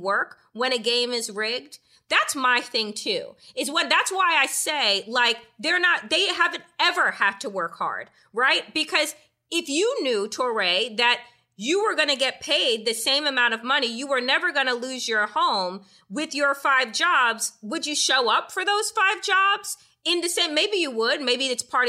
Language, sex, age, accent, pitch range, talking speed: English, female, 30-49, American, 225-320 Hz, 200 wpm